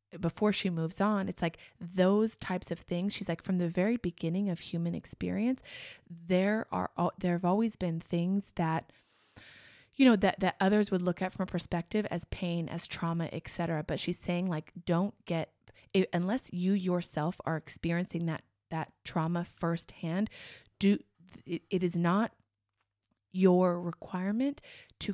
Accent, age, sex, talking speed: American, 20-39, female, 160 wpm